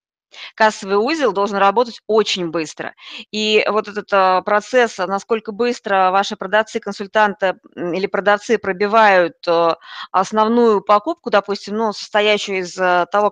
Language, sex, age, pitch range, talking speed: Russian, female, 20-39, 195-230 Hz, 115 wpm